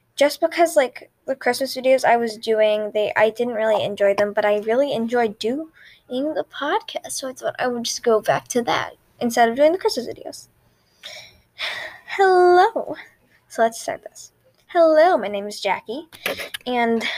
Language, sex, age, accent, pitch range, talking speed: English, female, 10-29, American, 225-305 Hz, 170 wpm